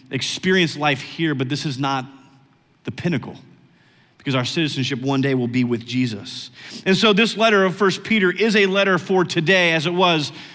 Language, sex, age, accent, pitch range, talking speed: English, male, 40-59, American, 145-195 Hz, 190 wpm